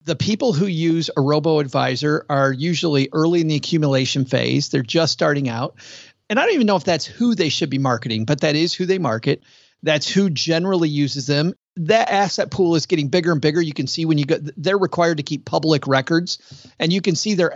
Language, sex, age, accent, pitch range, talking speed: English, male, 40-59, American, 135-175 Hz, 220 wpm